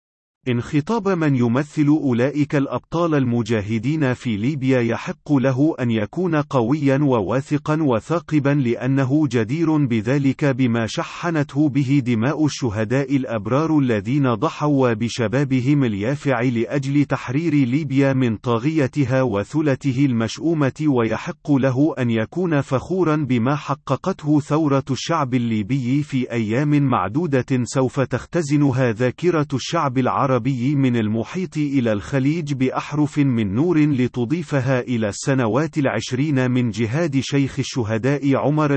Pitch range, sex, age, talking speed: 125-150 Hz, male, 40-59, 110 wpm